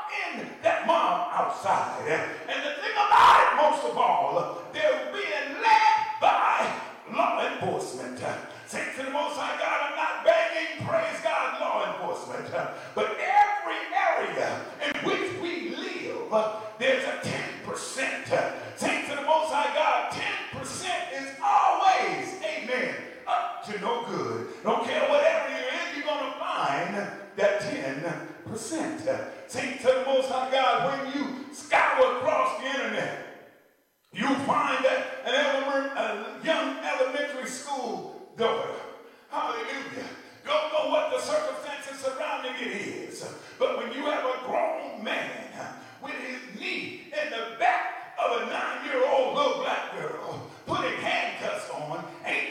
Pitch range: 275-380 Hz